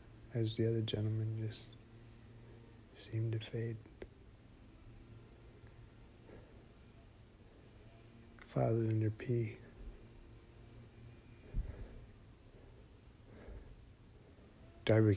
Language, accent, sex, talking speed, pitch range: English, American, male, 45 wpm, 110-115 Hz